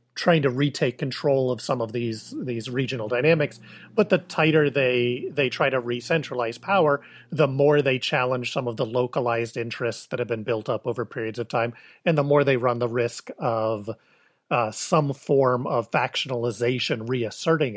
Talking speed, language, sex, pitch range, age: 175 wpm, English, male, 120-150 Hz, 40-59